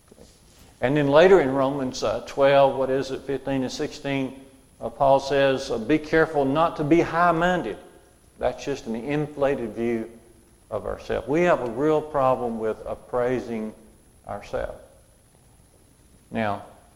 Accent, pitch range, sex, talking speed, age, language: American, 120-160 Hz, male, 140 wpm, 50-69, English